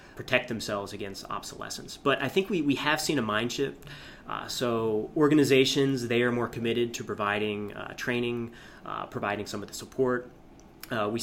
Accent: American